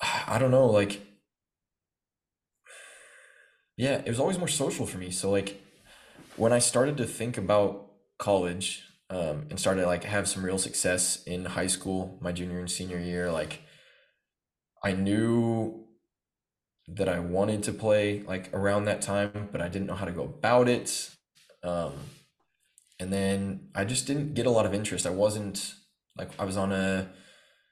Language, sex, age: English, male, 20-39